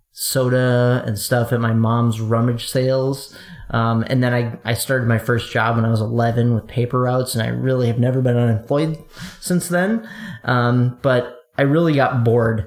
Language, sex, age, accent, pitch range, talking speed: English, male, 30-49, American, 115-135 Hz, 185 wpm